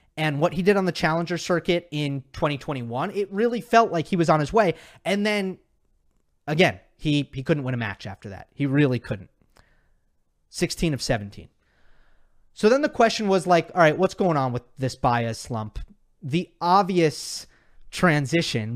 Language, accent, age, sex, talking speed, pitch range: English, American, 30-49, male, 175 wpm, 140-195 Hz